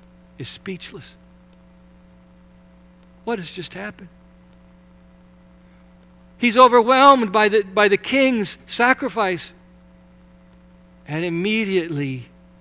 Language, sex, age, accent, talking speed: English, male, 60-79, American, 75 wpm